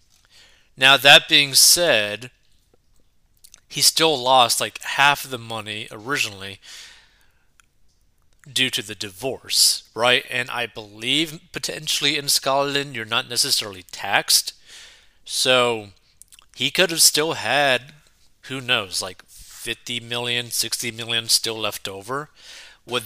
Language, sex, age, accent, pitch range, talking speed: English, male, 30-49, American, 115-155 Hz, 115 wpm